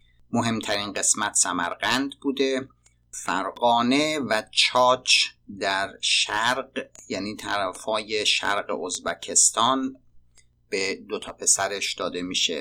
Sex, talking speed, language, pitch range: male, 85 wpm, Persian, 90-135 Hz